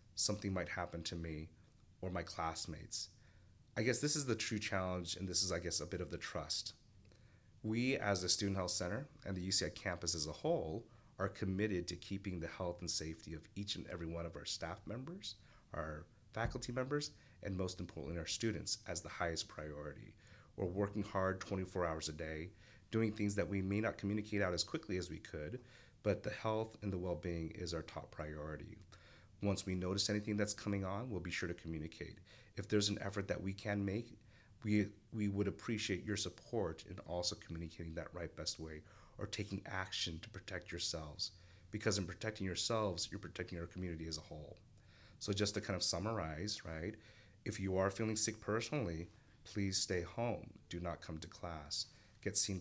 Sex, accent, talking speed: male, American, 195 wpm